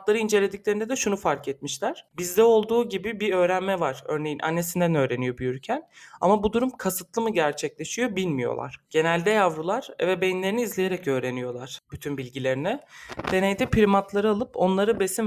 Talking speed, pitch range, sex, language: 140 wpm, 160-230 Hz, male, Turkish